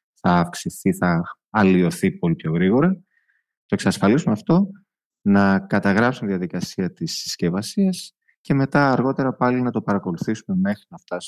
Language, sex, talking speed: Greek, male, 135 wpm